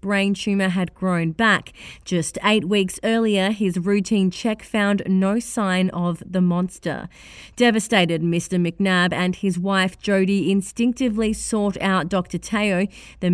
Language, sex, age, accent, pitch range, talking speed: English, female, 30-49, Australian, 180-215 Hz, 140 wpm